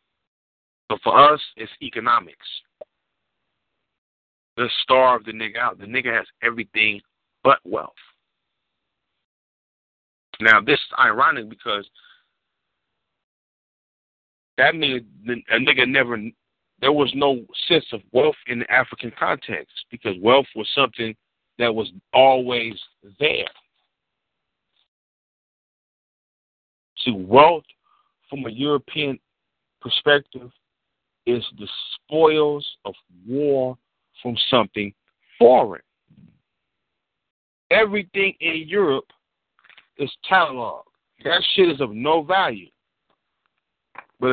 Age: 50-69